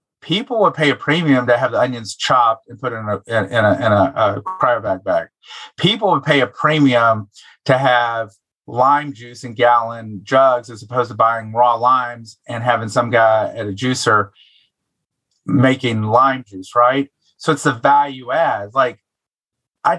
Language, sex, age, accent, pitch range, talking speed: English, male, 30-49, American, 115-145 Hz, 175 wpm